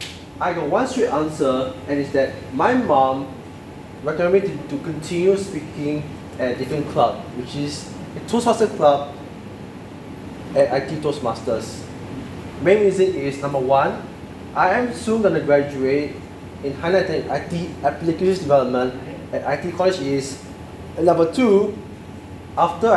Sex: male